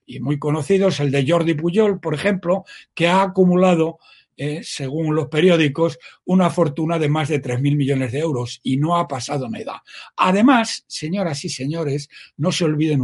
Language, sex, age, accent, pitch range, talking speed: Spanish, male, 60-79, Spanish, 140-185 Hz, 170 wpm